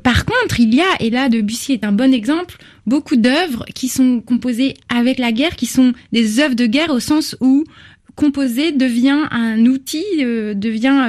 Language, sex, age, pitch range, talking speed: French, female, 20-39, 210-265 Hz, 190 wpm